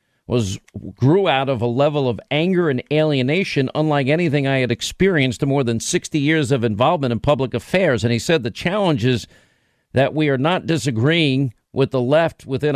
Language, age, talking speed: English, 50-69, 190 wpm